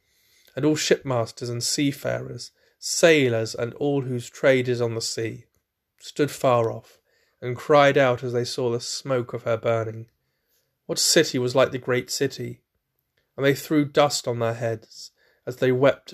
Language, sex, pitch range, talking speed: English, male, 115-135 Hz, 165 wpm